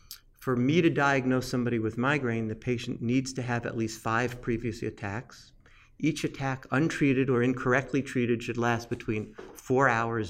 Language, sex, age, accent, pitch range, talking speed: English, male, 50-69, American, 115-130 Hz, 165 wpm